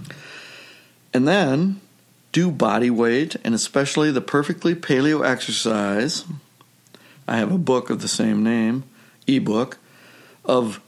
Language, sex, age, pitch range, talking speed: English, male, 60-79, 110-135 Hz, 115 wpm